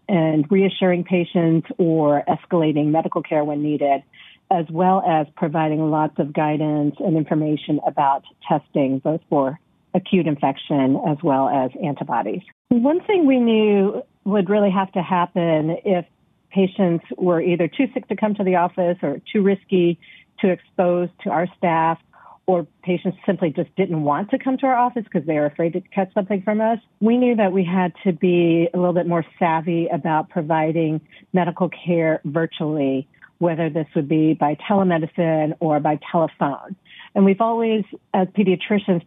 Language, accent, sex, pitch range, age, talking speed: English, American, female, 160-195 Hz, 40-59, 165 wpm